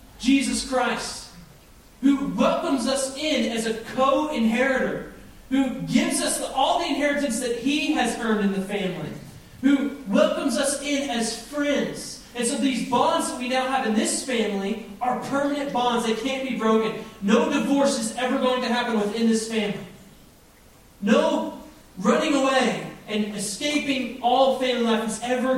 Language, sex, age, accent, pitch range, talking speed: English, male, 30-49, American, 220-270 Hz, 155 wpm